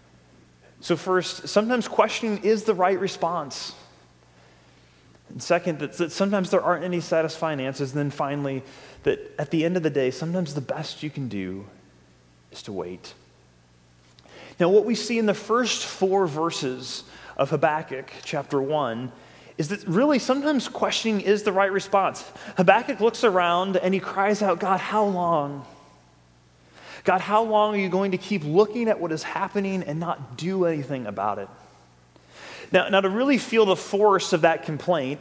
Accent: American